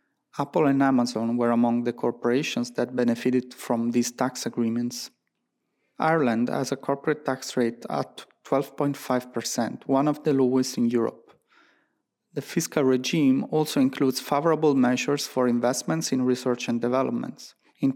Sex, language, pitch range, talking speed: male, English, 120-140 Hz, 135 wpm